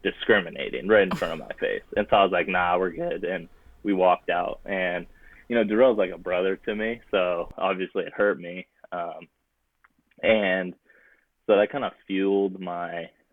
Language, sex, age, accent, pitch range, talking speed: English, male, 20-39, American, 85-95 Hz, 185 wpm